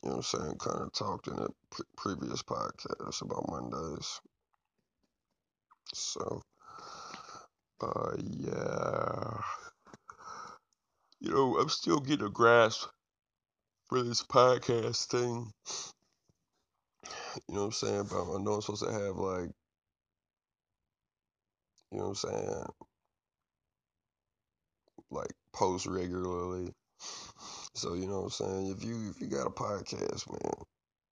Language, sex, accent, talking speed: English, male, American, 120 wpm